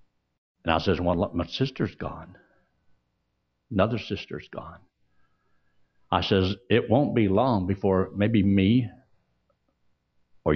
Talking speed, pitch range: 120 wpm, 75-105 Hz